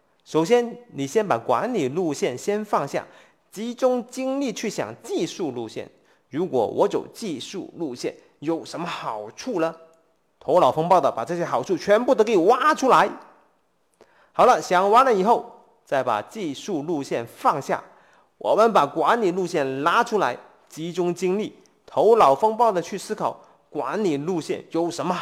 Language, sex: Chinese, male